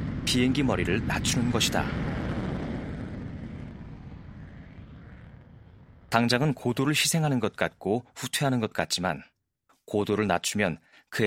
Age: 40-59